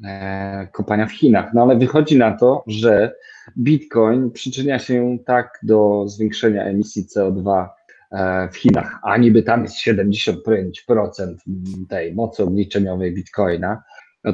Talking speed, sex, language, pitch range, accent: 120 wpm, male, Polish, 110-140 Hz, native